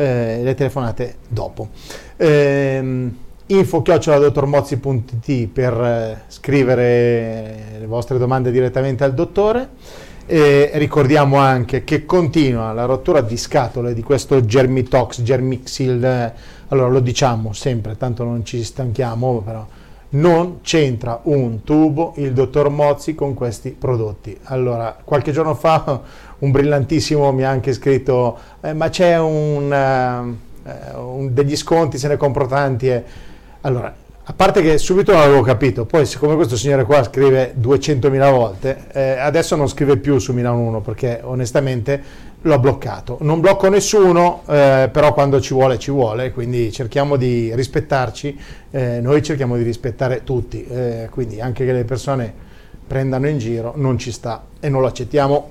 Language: Italian